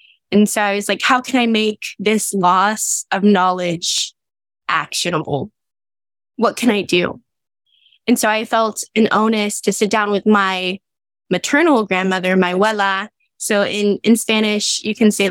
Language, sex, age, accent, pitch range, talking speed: English, female, 10-29, American, 195-245 Hz, 155 wpm